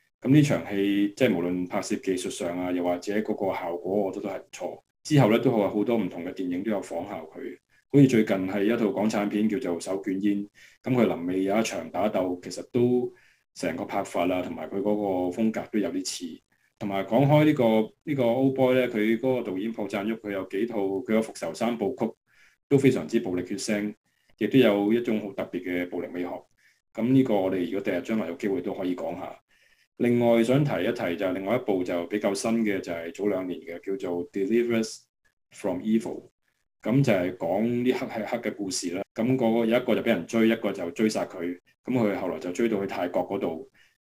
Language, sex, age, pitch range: Chinese, male, 20-39, 95-120 Hz